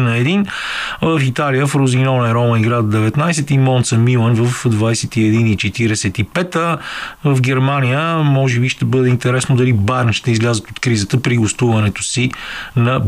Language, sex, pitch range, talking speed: Bulgarian, male, 120-145 Hz, 150 wpm